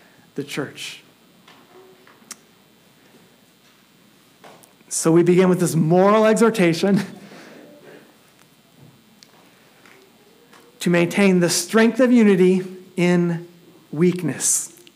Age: 40-59